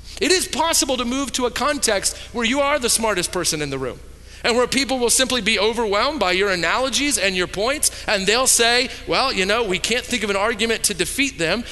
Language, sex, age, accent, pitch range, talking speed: English, male, 40-59, American, 210-260 Hz, 230 wpm